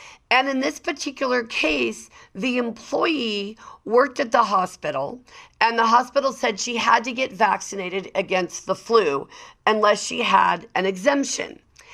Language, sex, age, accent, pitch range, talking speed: English, female, 50-69, American, 195-260 Hz, 140 wpm